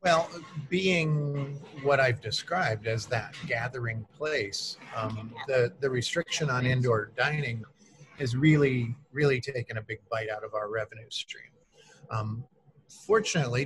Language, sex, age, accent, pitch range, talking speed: English, male, 50-69, American, 120-150 Hz, 130 wpm